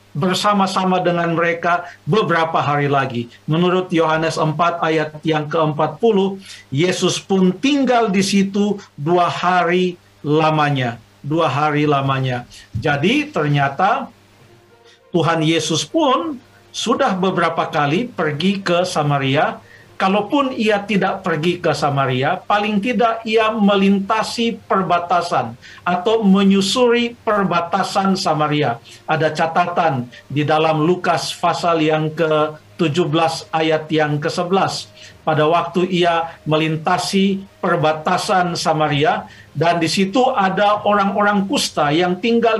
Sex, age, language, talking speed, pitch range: male, 50-69, Indonesian, 105 wpm, 155-195 Hz